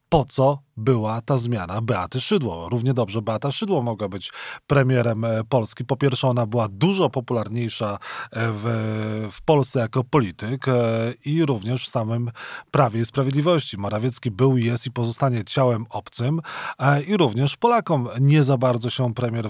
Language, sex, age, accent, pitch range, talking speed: Polish, male, 30-49, native, 115-140 Hz, 150 wpm